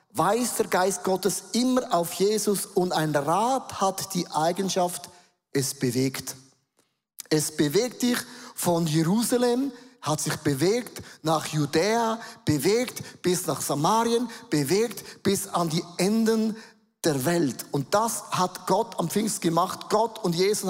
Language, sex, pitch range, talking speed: German, male, 165-220 Hz, 135 wpm